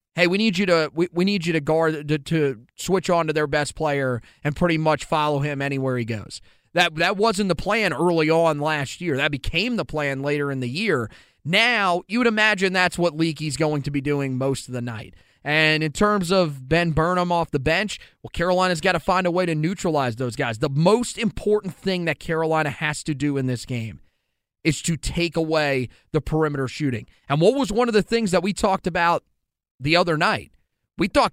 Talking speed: 215 wpm